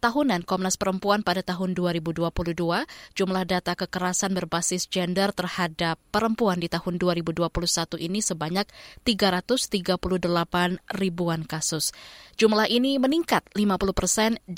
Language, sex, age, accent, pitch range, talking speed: Indonesian, female, 20-39, native, 170-200 Hz, 105 wpm